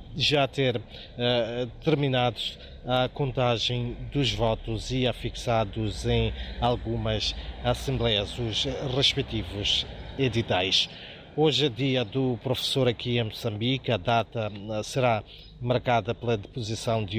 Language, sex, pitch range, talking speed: Portuguese, male, 110-125 Hz, 110 wpm